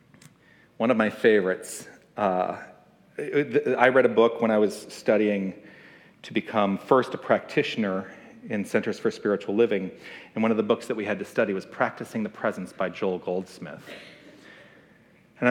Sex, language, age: male, English, 40-59